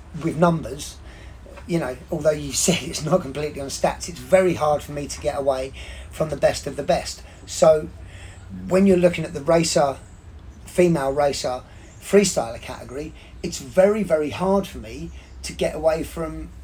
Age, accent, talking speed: 30-49, British, 170 wpm